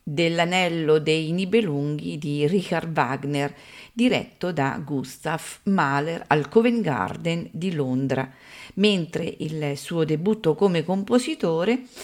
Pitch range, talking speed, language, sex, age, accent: 155-210 Hz, 105 wpm, Italian, female, 40-59, native